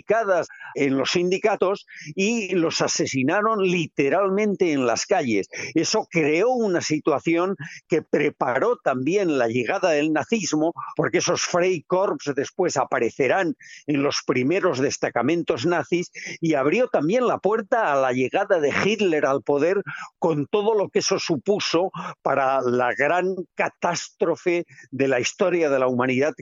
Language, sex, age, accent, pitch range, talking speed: Spanish, male, 50-69, Spanish, 140-180 Hz, 135 wpm